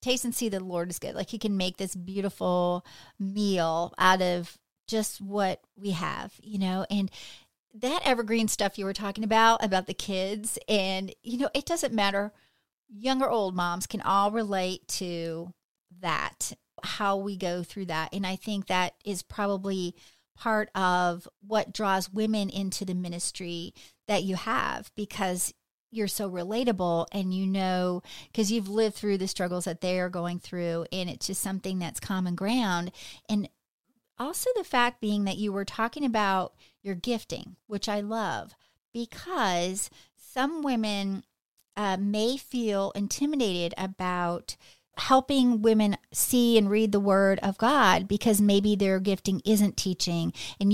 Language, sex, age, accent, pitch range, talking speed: English, female, 40-59, American, 185-220 Hz, 160 wpm